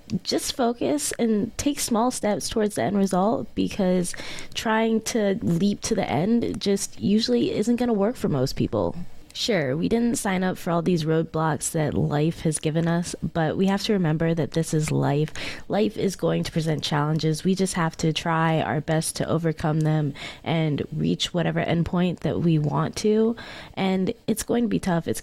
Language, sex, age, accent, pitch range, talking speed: English, female, 20-39, American, 165-200 Hz, 190 wpm